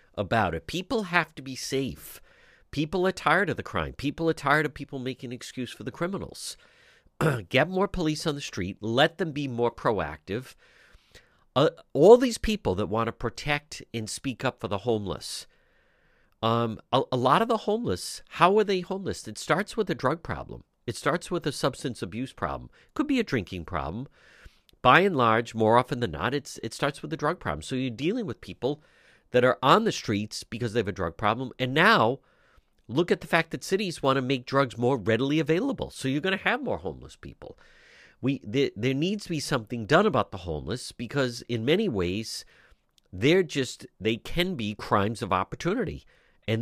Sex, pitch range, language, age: male, 115-160 Hz, English, 50-69